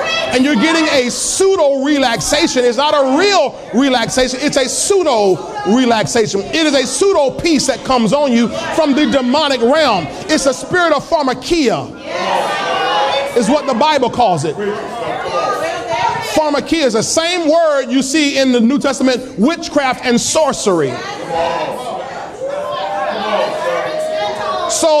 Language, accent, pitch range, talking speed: English, American, 260-320 Hz, 130 wpm